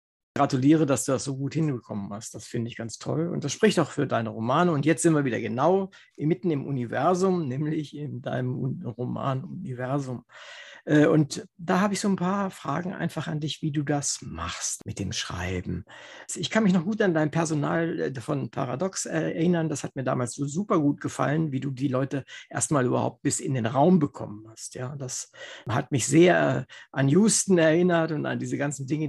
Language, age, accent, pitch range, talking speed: German, 60-79, German, 130-175 Hz, 200 wpm